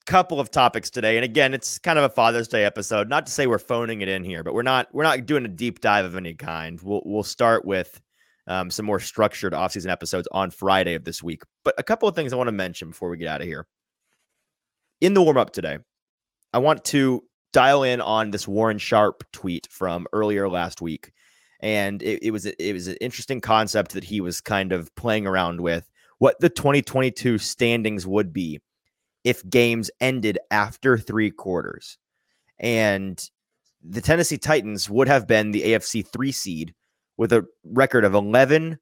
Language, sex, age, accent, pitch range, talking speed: English, male, 30-49, American, 95-125 Hz, 200 wpm